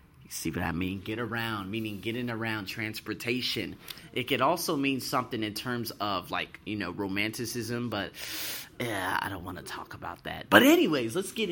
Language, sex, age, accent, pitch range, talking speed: English, male, 30-49, American, 105-140 Hz, 180 wpm